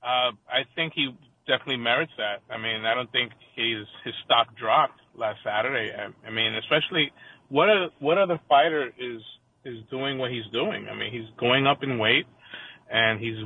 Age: 30-49